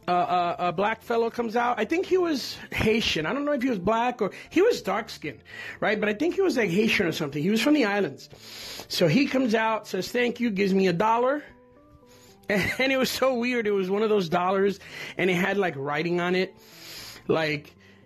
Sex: male